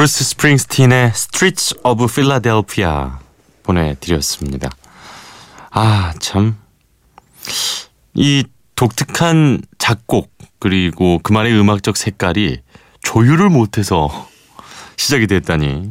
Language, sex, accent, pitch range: Korean, male, native, 85-125 Hz